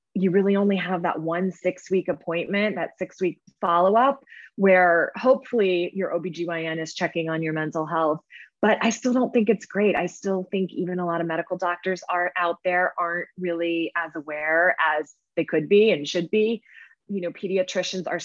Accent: American